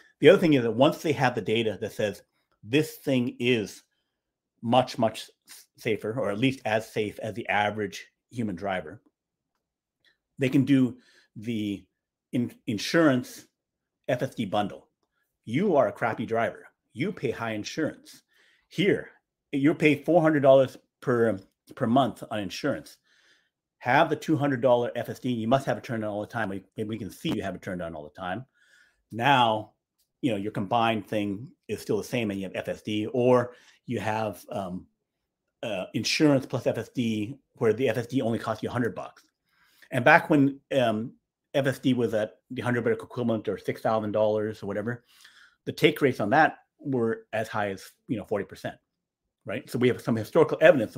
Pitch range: 105-135 Hz